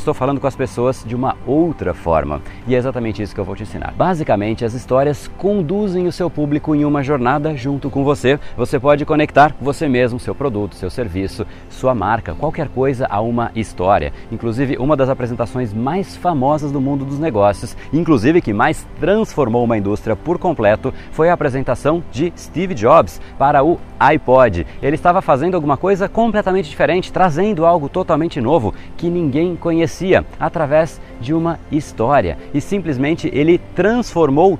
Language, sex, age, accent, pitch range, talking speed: Portuguese, male, 30-49, Brazilian, 120-165 Hz, 165 wpm